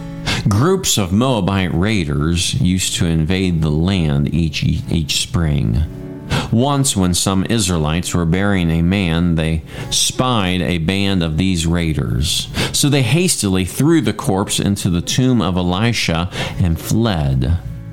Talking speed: 135 wpm